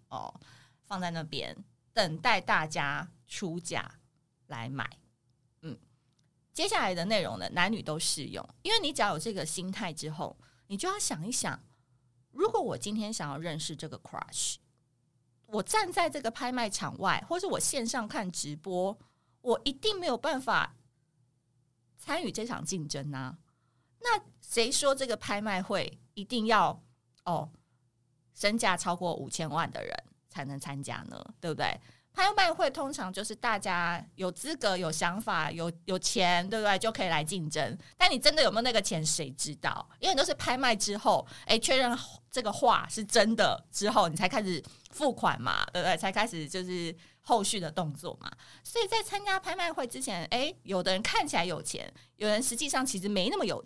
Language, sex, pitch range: Chinese, female, 155-240 Hz